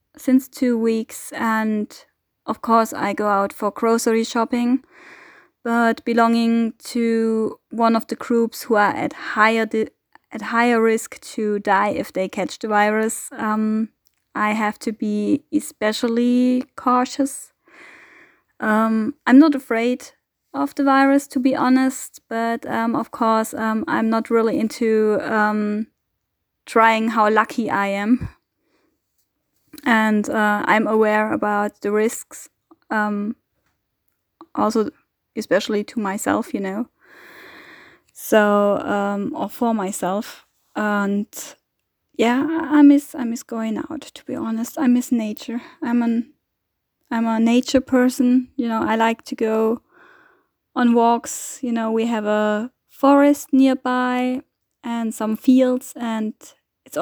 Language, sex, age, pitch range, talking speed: English, female, 20-39, 220-265 Hz, 130 wpm